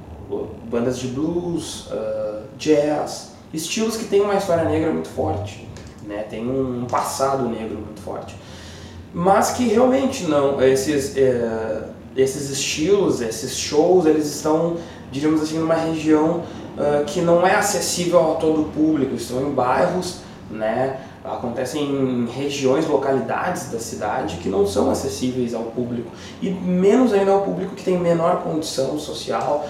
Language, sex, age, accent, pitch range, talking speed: Portuguese, male, 20-39, Brazilian, 115-165 Hz, 135 wpm